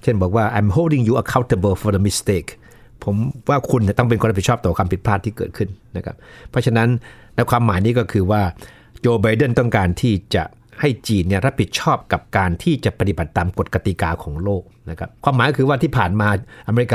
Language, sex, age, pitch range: Thai, male, 60-79, 95-120 Hz